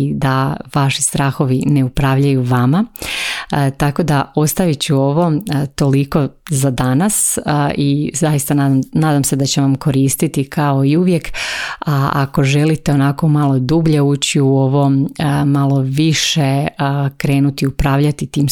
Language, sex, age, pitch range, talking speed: Croatian, female, 30-49, 135-150 Hz, 145 wpm